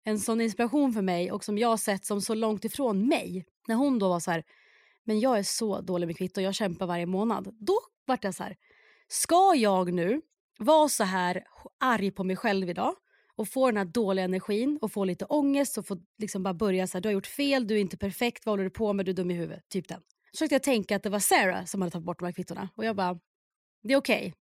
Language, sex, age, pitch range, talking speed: Swedish, female, 30-49, 190-240 Hz, 255 wpm